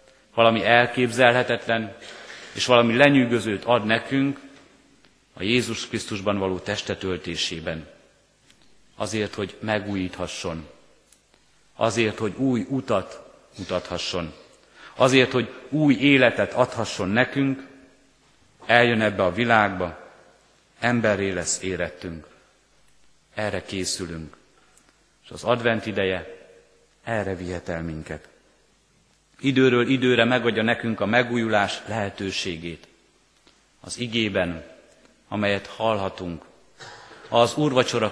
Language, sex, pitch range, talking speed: Hungarian, male, 100-125 Hz, 90 wpm